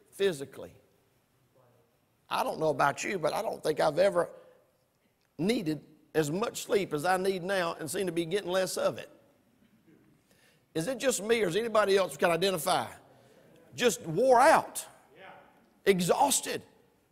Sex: male